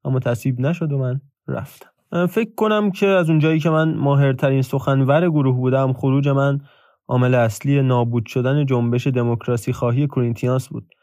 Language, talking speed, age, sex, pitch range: Persian, 150 wpm, 20-39, male, 125-155 Hz